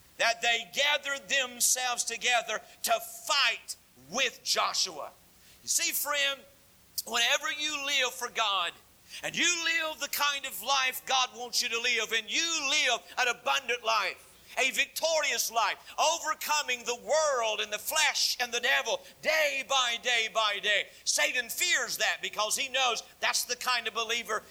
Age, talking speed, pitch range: 50-69, 155 wpm, 230-310 Hz